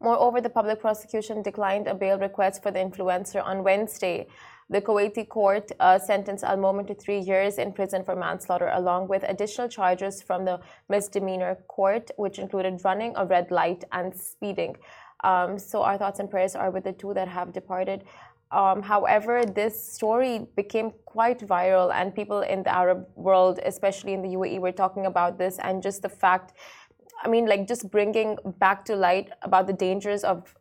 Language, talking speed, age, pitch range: Arabic, 180 wpm, 20-39, 185-210 Hz